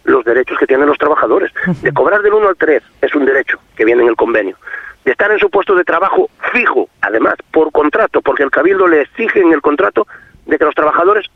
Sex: male